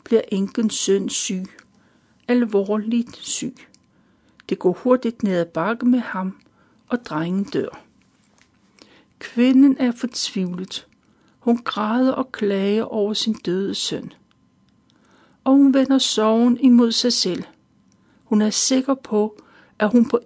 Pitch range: 205-245 Hz